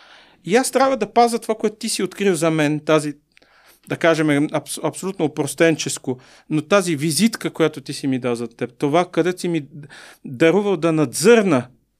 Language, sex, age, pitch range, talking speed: Bulgarian, male, 40-59, 150-195 Hz, 175 wpm